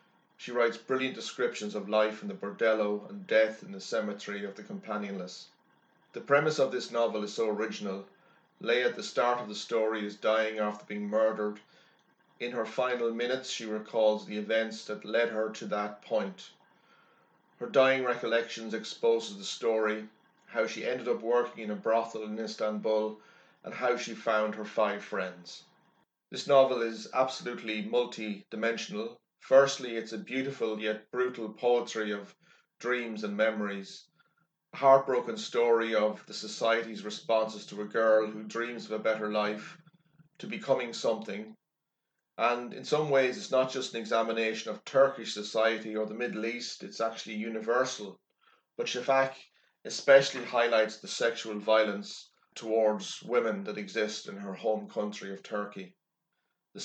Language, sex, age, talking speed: English, male, 30-49, 155 wpm